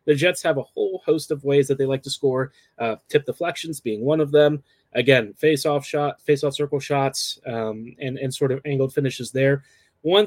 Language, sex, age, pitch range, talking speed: English, male, 30-49, 130-150 Hz, 205 wpm